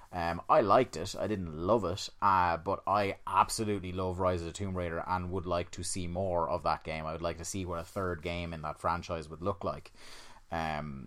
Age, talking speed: 30-49, 235 wpm